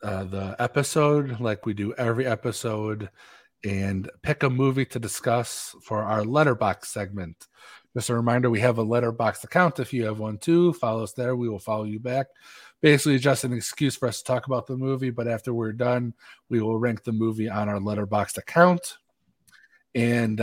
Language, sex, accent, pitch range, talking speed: English, male, American, 110-135 Hz, 190 wpm